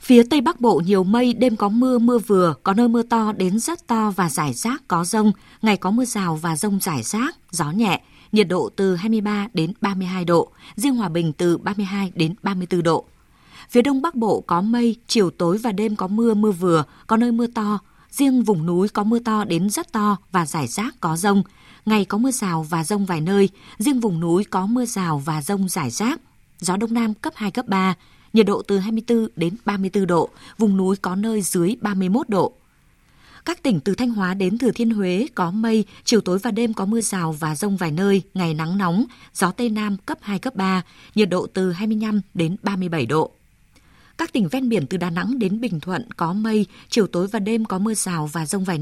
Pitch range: 180-225 Hz